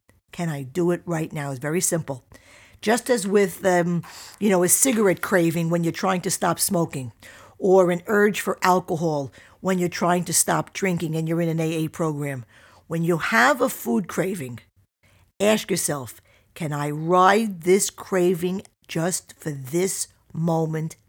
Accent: American